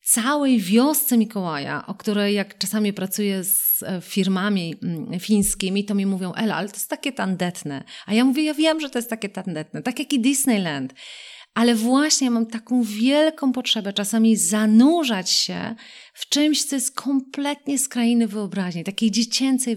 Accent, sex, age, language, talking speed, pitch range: native, female, 30-49, Polish, 160 wpm, 200-250 Hz